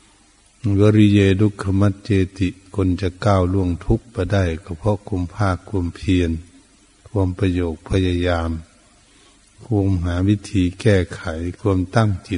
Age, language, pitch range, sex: 60-79, Thai, 90-100 Hz, male